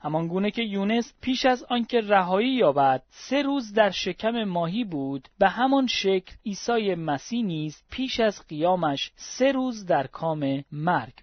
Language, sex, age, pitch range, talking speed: Persian, male, 40-59, 155-215 Hz, 150 wpm